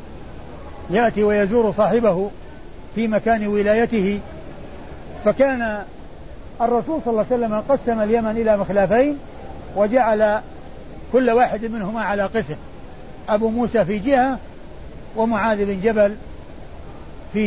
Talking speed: 105 wpm